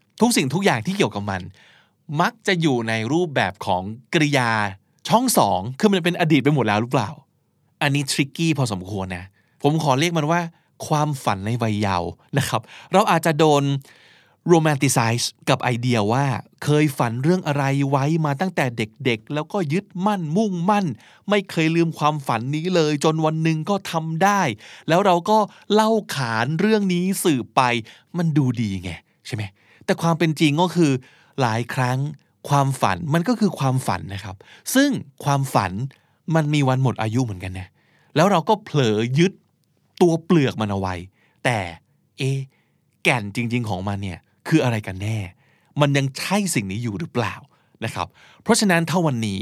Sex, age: male, 20-39